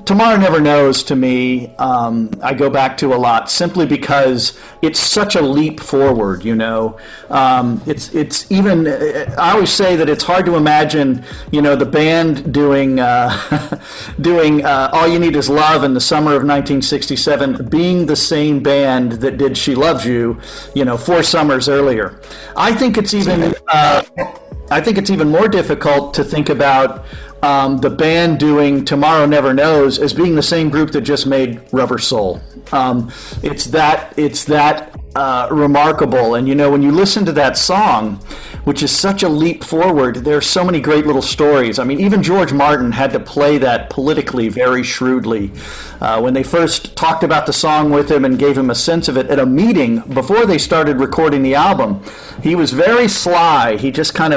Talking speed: 190 wpm